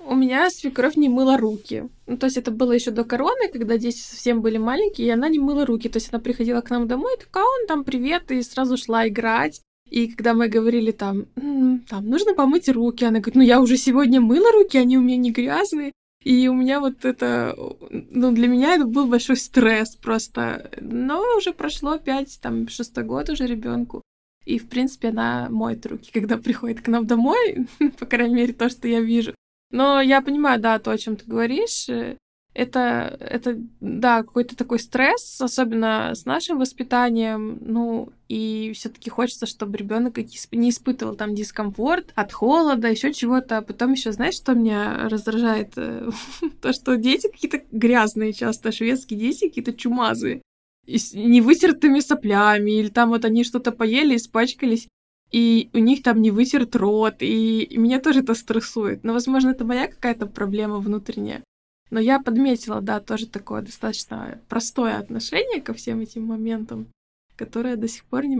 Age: 20-39